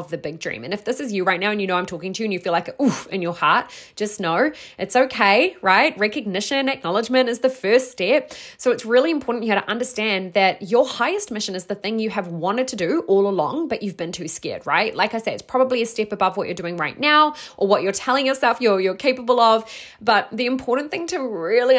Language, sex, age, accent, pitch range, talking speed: English, female, 20-39, Australian, 185-250 Hz, 255 wpm